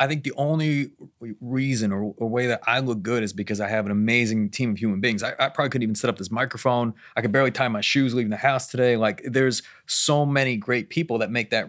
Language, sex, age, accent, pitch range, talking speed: English, male, 30-49, American, 110-135 Hz, 255 wpm